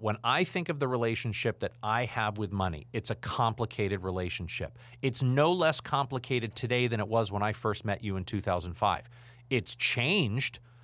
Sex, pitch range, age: male, 110-130 Hz, 40-59